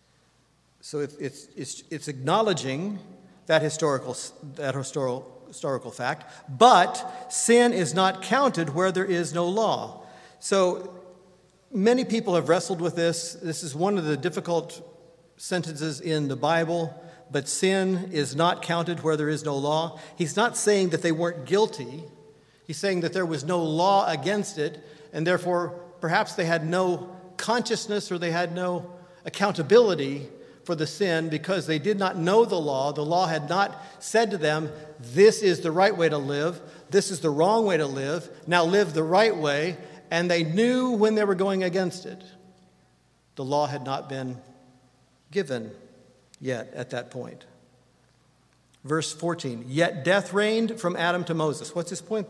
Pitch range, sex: 150-190 Hz, male